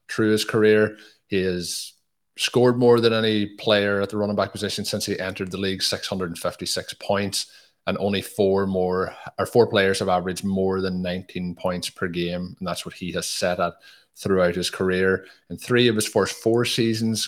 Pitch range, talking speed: 90-105 Hz, 190 wpm